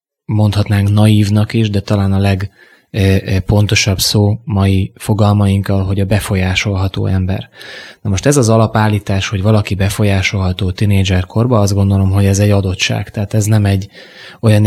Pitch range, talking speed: 95-110 Hz, 145 wpm